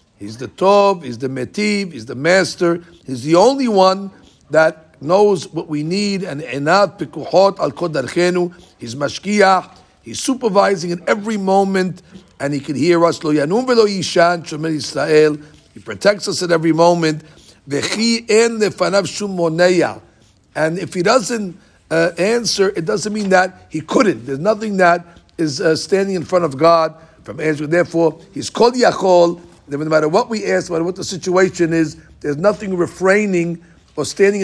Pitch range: 155-195 Hz